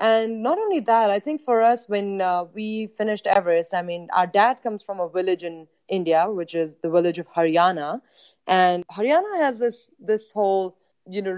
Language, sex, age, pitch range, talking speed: English, female, 20-39, 180-230 Hz, 195 wpm